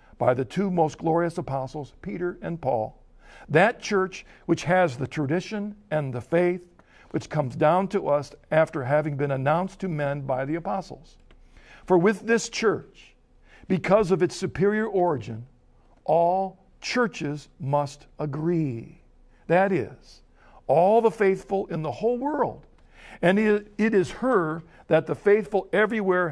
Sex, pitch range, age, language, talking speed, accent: male, 140-190 Hz, 60-79, English, 140 wpm, American